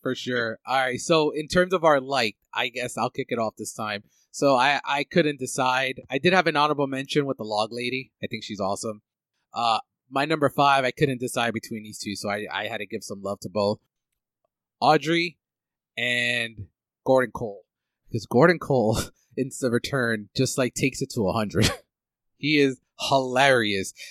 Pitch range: 115-145 Hz